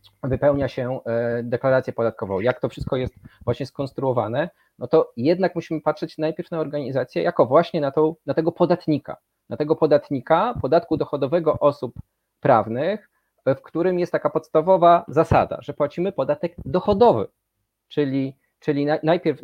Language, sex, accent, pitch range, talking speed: Polish, male, native, 125-165 Hz, 140 wpm